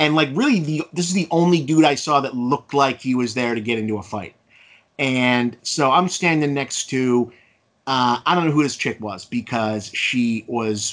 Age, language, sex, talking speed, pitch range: 30-49, English, male, 215 wpm, 120-150 Hz